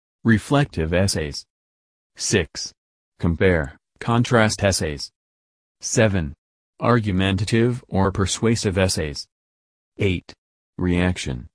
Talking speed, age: 70 wpm, 30-49